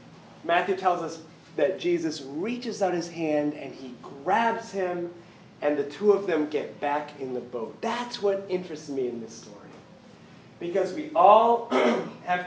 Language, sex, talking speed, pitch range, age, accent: English, male, 165 wpm, 145-205 Hz, 30-49, American